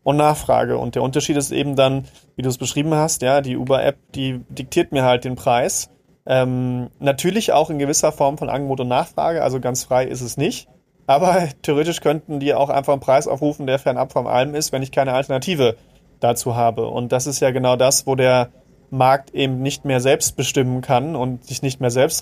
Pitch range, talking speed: 130-145 Hz, 215 wpm